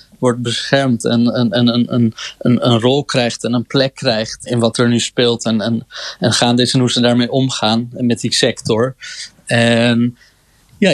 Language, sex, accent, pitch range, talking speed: Dutch, male, Dutch, 125-150 Hz, 195 wpm